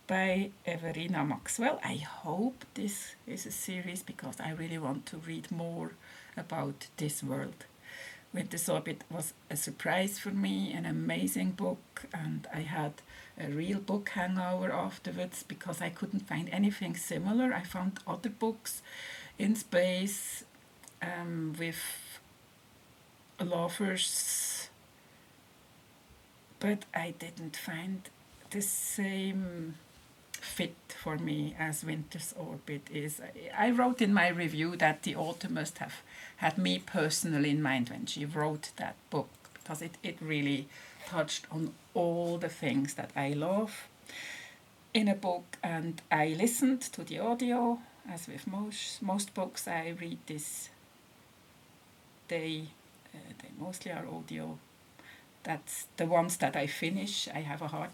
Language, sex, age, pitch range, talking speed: English, female, 50-69, 155-200 Hz, 135 wpm